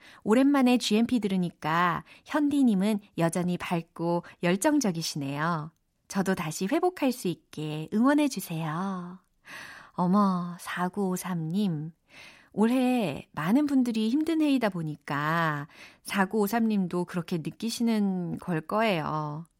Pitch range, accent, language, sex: 175-245 Hz, native, Korean, female